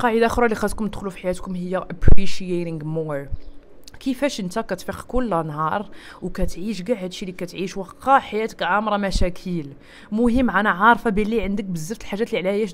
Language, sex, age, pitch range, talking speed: Arabic, female, 20-39, 180-240 Hz, 160 wpm